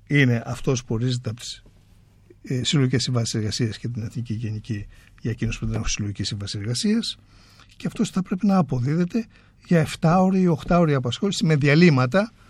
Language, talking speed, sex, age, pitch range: Greek, 180 wpm, male, 60-79, 110-150 Hz